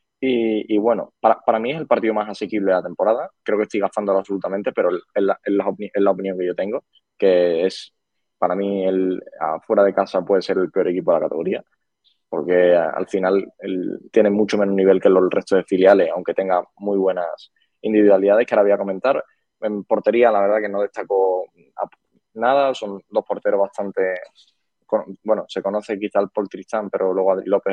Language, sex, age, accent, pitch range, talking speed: Spanish, male, 20-39, Spanish, 95-110 Hz, 190 wpm